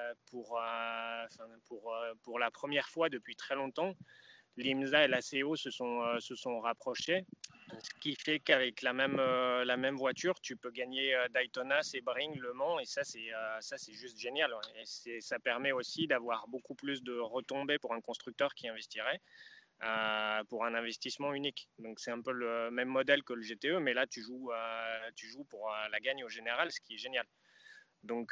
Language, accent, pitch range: French, French, 115-135 Hz